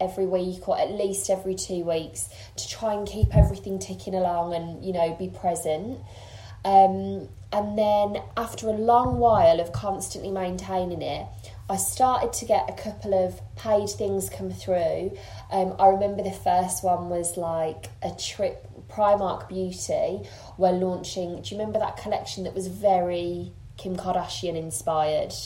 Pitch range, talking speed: 170-205 Hz, 160 wpm